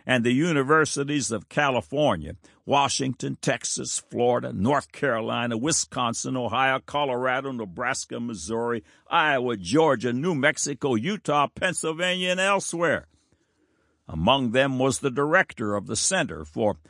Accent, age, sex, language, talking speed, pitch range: American, 60-79, male, English, 115 wpm, 110-145 Hz